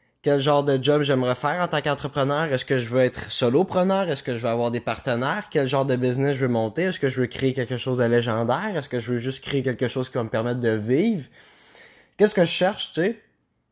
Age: 20-39